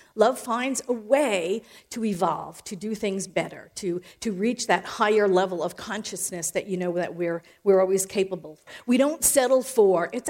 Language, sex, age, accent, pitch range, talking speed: English, female, 50-69, American, 195-265 Hz, 185 wpm